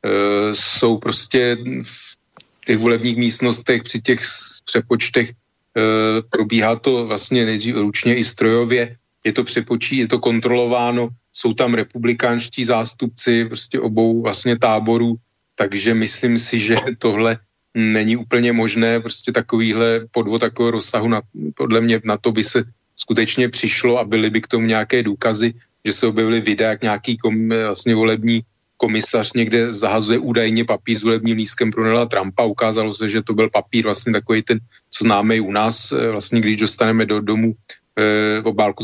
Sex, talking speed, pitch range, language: male, 155 wpm, 110-120 Hz, Slovak